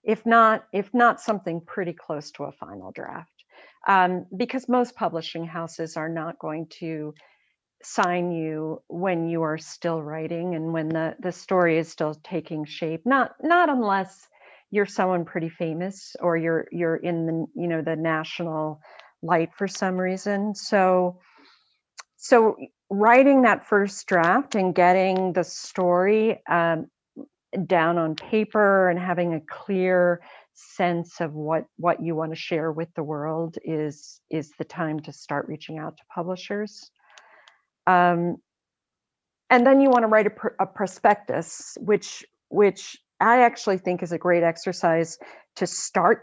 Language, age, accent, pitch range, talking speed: English, 50-69, American, 160-200 Hz, 150 wpm